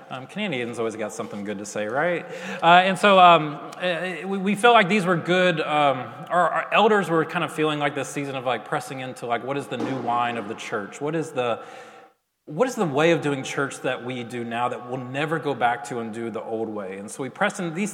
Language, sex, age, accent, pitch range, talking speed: English, male, 30-49, American, 125-165 Hz, 250 wpm